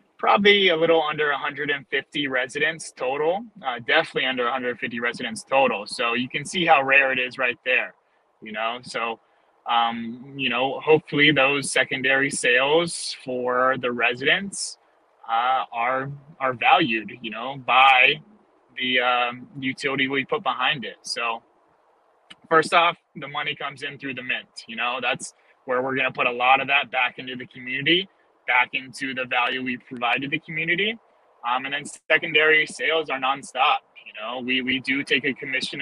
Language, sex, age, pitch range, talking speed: English, male, 20-39, 125-155 Hz, 165 wpm